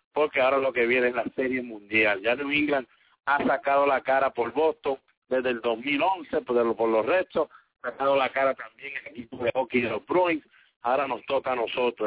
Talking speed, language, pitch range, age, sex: 225 wpm, English, 120-140 Hz, 50-69, male